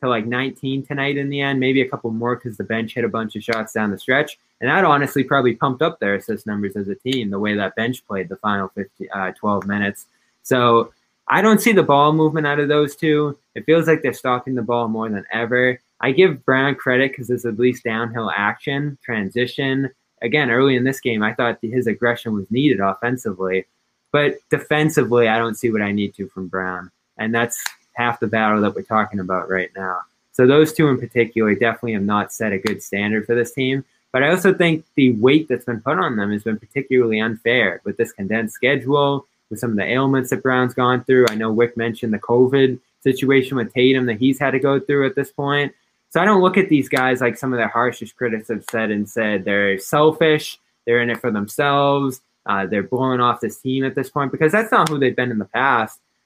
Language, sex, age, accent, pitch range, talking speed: English, male, 20-39, American, 110-135 Hz, 230 wpm